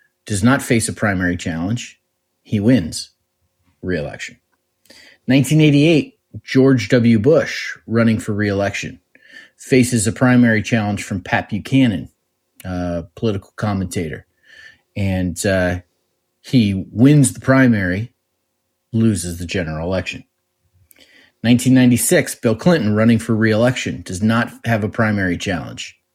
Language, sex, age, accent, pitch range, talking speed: English, male, 40-59, American, 90-120 Hz, 110 wpm